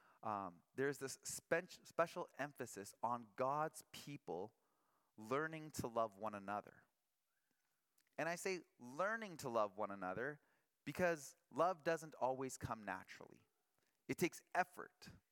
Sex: male